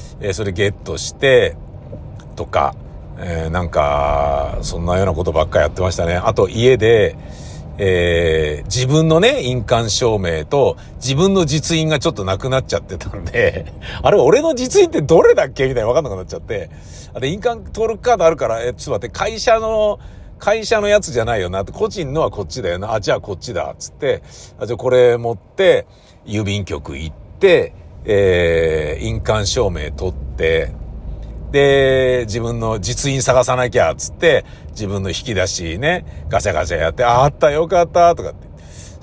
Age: 50-69